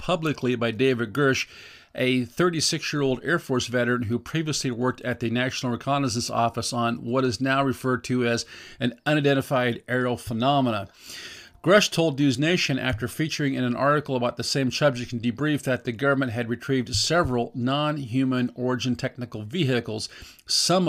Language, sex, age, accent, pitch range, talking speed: English, male, 50-69, American, 120-145 Hz, 155 wpm